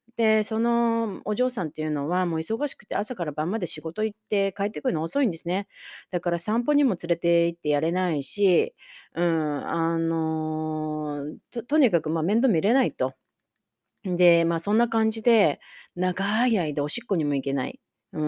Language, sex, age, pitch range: Japanese, female, 30-49, 155-220 Hz